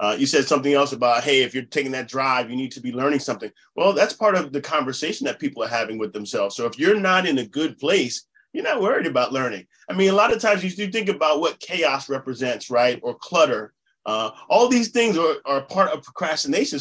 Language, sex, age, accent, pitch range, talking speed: English, male, 30-49, American, 125-175 Hz, 245 wpm